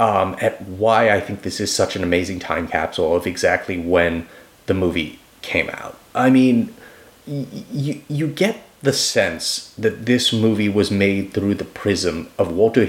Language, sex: English, male